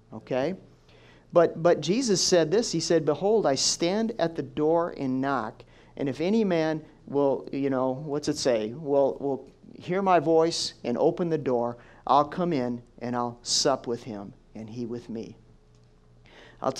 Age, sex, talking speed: 50-69, male, 170 wpm